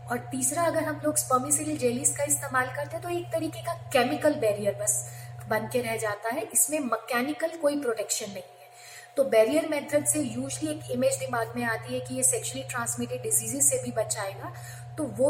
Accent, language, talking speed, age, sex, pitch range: native, Hindi, 190 wpm, 30-49, female, 210-265 Hz